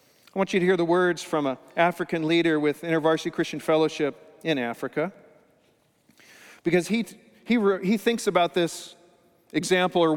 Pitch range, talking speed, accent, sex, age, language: 150-180 Hz, 150 wpm, American, male, 40-59, English